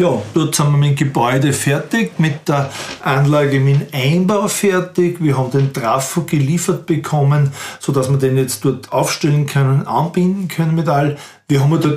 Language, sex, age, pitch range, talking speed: German, male, 40-59, 135-160 Hz, 180 wpm